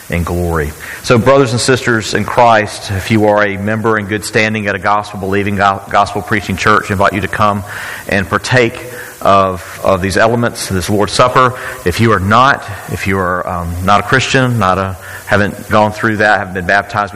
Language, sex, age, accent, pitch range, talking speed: English, male, 40-59, American, 95-110 Hz, 190 wpm